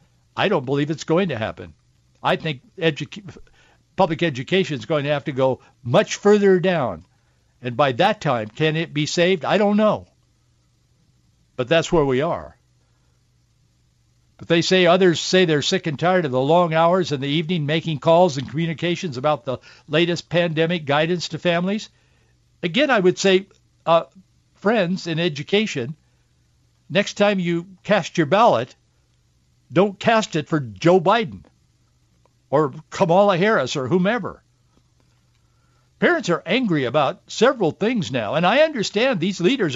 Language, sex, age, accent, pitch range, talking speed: English, male, 60-79, American, 140-190 Hz, 150 wpm